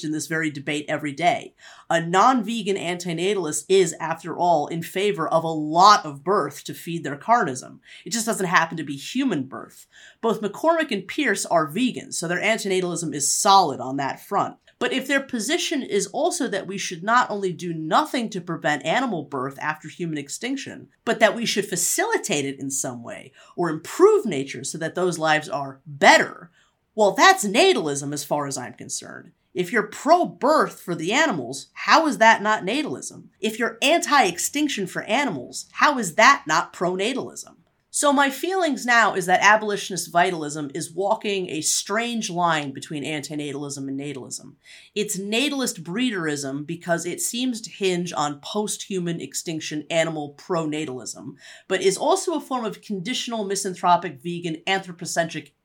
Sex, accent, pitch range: female, American, 155-225 Hz